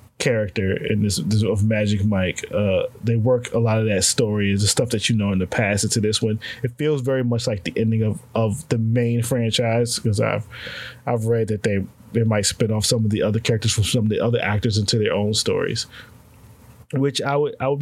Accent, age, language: American, 20-39, English